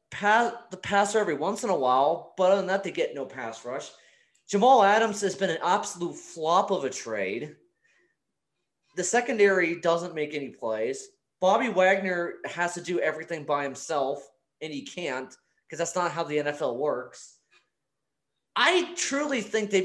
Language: English